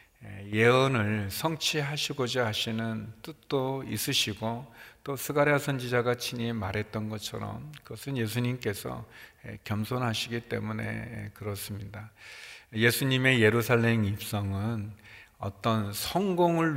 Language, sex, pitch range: Korean, male, 105-125 Hz